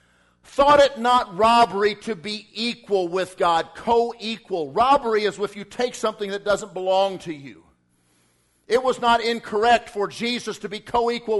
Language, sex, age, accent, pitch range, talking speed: English, male, 50-69, American, 150-215 Hz, 160 wpm